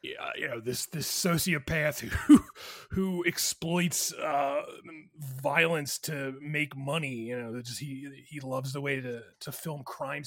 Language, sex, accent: English, male, American